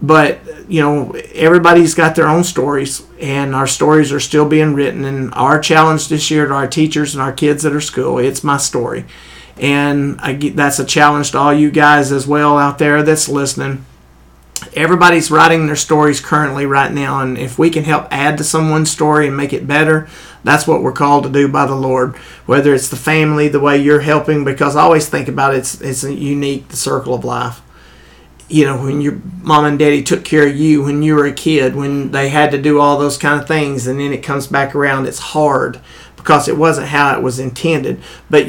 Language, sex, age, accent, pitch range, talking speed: English, male, 50-69, American, 135-150 Hz, 215 wpm